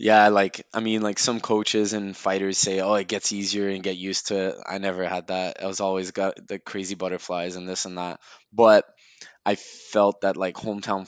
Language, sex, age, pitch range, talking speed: English, male, 20-39, 90-100 Hz, 215 wpm